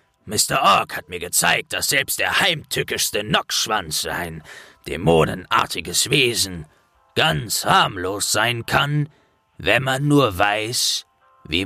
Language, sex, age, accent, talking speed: German, male, 40-59, German, 115 wpm